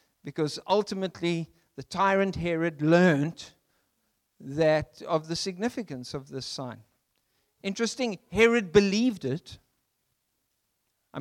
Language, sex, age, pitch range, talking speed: English, male, 60-79, 145-220 Hz, 95 wpm